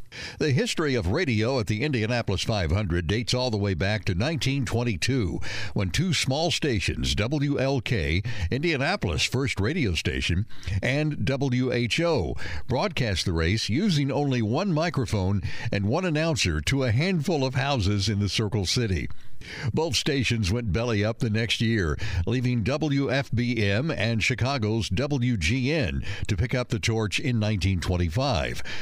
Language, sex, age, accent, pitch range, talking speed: English, male, 60-79, American, 100-130 Hz, 135 wpm